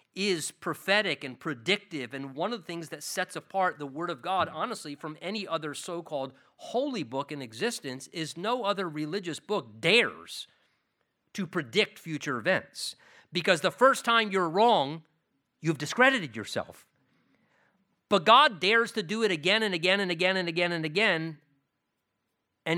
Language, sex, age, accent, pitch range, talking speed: English, male, 50-69, American, 160-220 Hz, 160 wpm